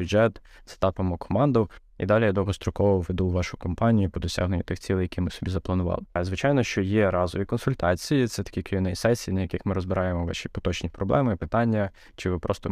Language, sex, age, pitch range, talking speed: Ukrainian, male, 20-39, 90-105 Hz, 185 wpm